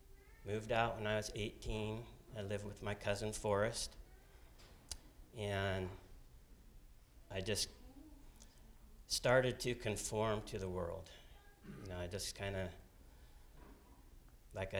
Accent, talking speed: American, 115 wpm